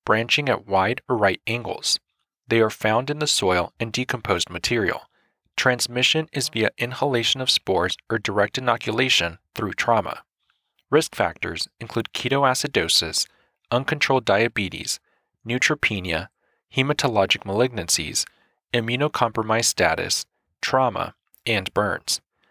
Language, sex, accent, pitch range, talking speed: English, male, American, 100-135 Hz, 105 wpm